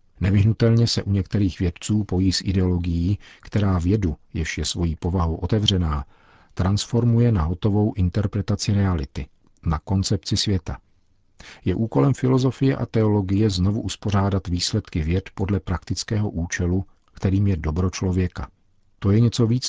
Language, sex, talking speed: Czech, male, 130 wpm